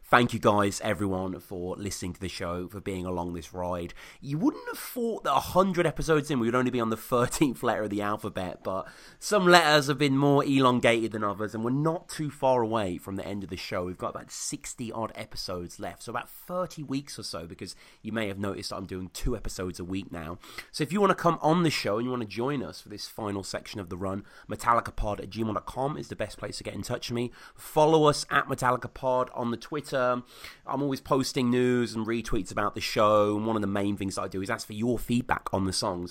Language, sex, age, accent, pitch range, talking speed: English, male, 30-49, British, 100-140 Hz, 245 wpm